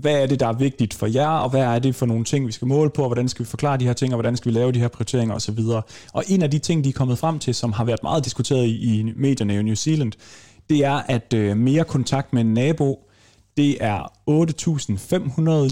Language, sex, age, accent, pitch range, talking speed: Danish, male, 30-49, native, 110-145 Hz, 260 wpm